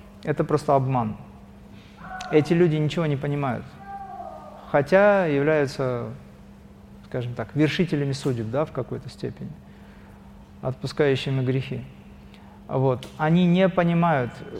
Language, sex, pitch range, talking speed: Russian, male, 130-175 Hz, 100 wpm